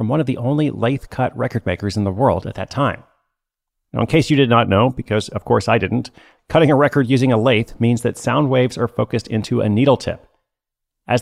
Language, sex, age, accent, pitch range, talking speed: English, male, 30-49, American, 110-135 Hz, 235 wpm